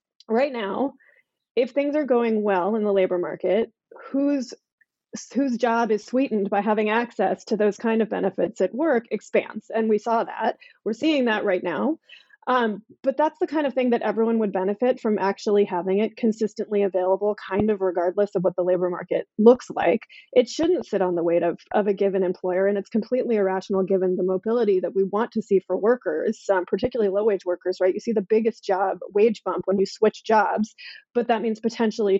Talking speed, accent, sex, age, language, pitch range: 205 wpm, American, female, 30-49, English, 195-245 Hz